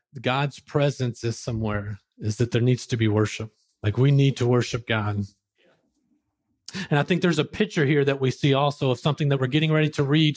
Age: 40-59